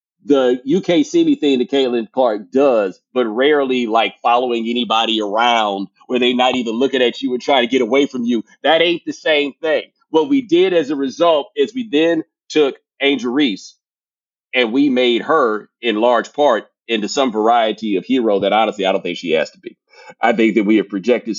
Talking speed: 200 wpm